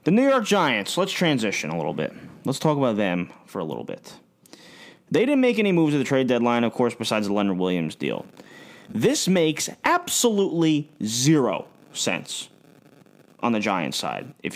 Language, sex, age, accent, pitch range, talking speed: English, male, 30-49, American, 125-190 Hz, 175 wpm